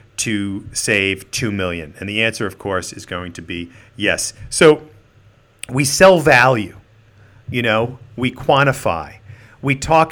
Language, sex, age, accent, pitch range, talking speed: English, male, 40-59, American, 100-125 Hz, 140 wpm